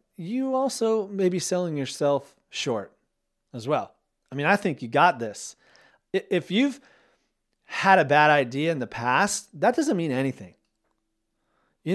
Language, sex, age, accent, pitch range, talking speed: English, male, 30-49, American, 120-185 Hz, 150 wpm